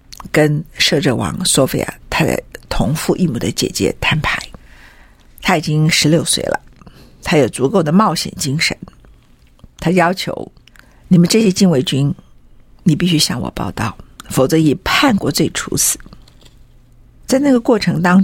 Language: Chinese